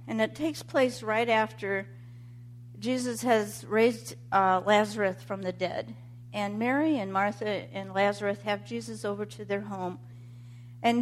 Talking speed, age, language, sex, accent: 145 wpm, 50-69, English, female, American